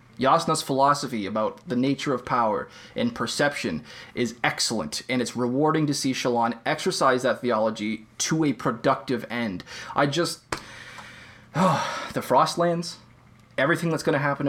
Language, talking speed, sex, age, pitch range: English, 135 wpm, male, 20-39, 125-155 Hz